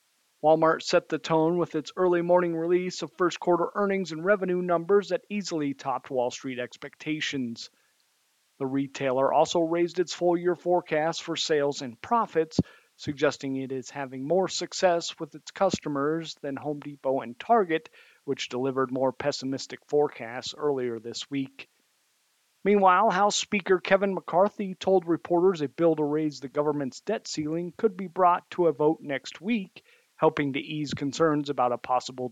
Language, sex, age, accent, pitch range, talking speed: English, male, 40-59, American, 140-180 Hz, 155 wpm